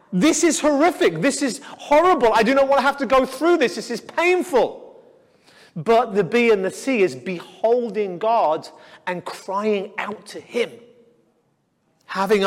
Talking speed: 165 wpm